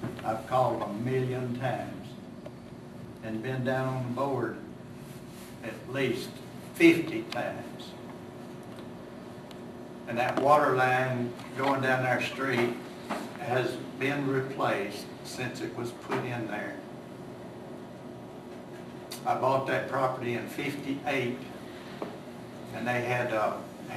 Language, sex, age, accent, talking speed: English, male, 60-79, American, 105 wpm